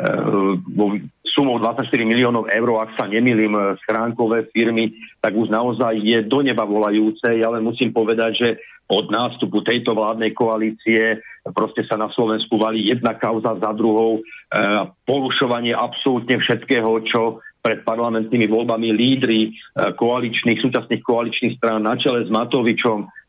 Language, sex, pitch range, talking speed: English, male, 110-125 Hz, 135 wpm